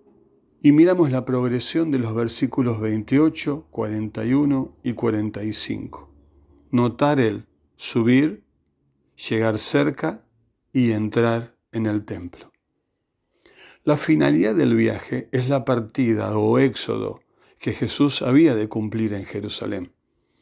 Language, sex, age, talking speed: Spanish, male, 50-69, 110 wpm